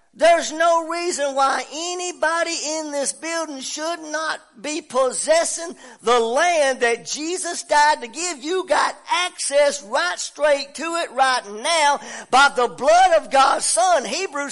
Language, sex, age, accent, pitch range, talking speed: English, male, 50-69, American, 265-355 Hz, 145 wpm